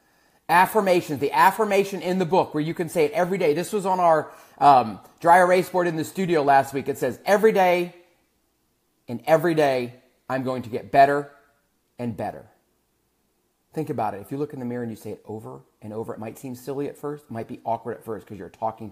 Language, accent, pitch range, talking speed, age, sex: English, American, 125-190 Hz, 225 wpm, 30-49, male